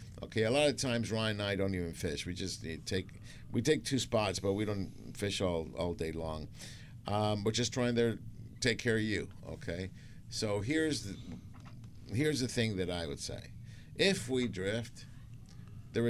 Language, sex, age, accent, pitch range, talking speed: English, male, 50-69, American, 95-120 Hz, 185 wpm